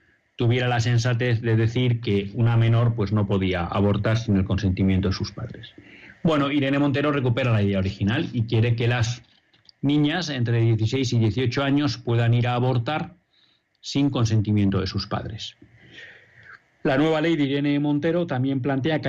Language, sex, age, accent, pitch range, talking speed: Spanish, male, 40-59, Spanish, 110-140 Hz, 165 wpm